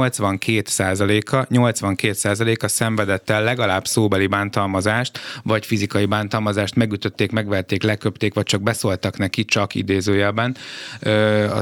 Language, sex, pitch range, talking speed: Hungarian, male, 105-115 Hz, 100 wpm